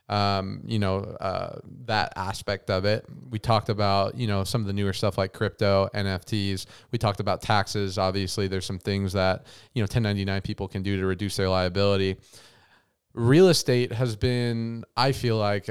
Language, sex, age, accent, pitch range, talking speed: English, male, 20-39, American, 100-115 Hz, 180 wpm